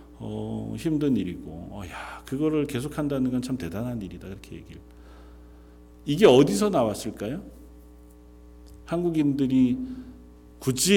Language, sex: Korean, male